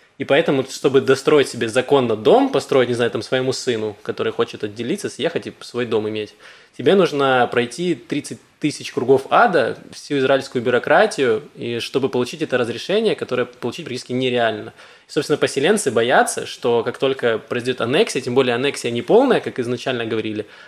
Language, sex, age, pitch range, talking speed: Russian, male, 20-39, 120-140 Hz, 165 wpm